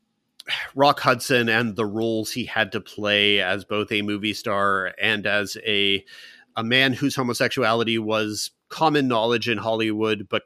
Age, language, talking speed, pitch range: 30-49, English, 155 wpm, 100-115 Hz